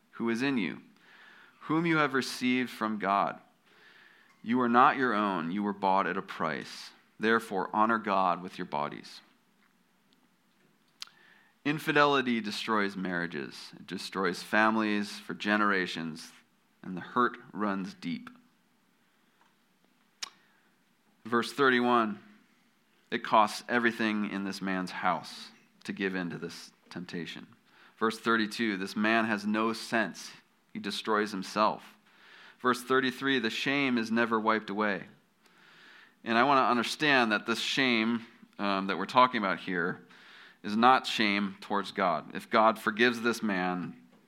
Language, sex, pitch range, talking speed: English, male, 100-130 Hz, 130 wpm